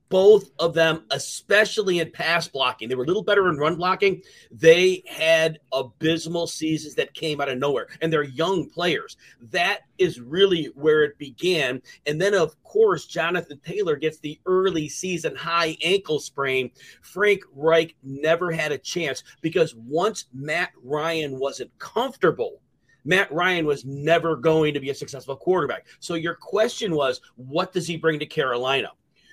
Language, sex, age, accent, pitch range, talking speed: English, male, 40-59, American, 150-185 Hz, 160 wpm